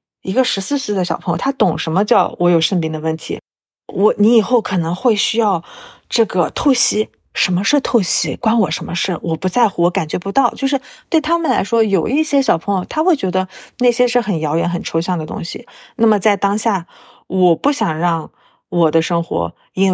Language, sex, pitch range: Chinese, female, 165-220 Hz